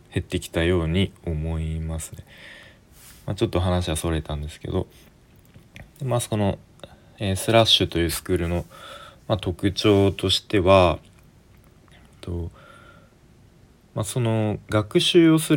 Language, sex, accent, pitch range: Japanese, male, native, 85-110 Hz